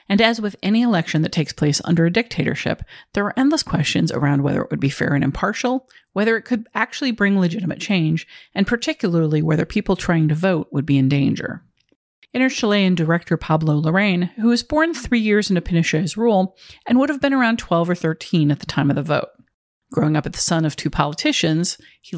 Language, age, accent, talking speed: English, 40-59, American, 210 wpm